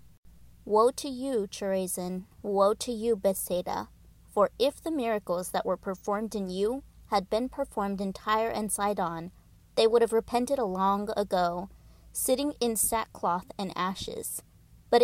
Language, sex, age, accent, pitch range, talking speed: English, female, 30-49, American, 195-235 Hz, 150 wpm